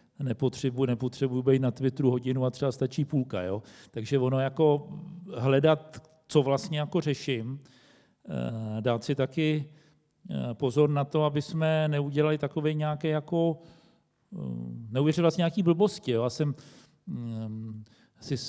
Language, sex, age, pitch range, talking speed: Czech, male, 40-59, 125-150 Hz, 125 wpm